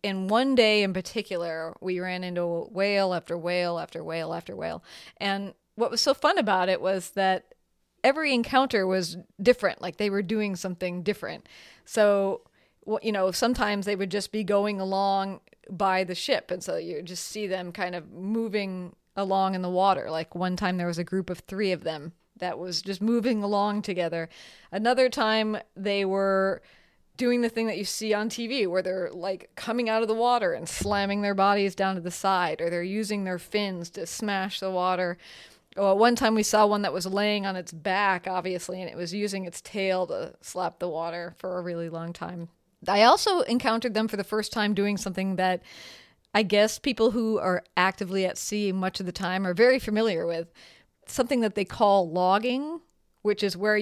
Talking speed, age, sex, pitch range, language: 200 wpm, 30-49, female, 180-215 Hz, English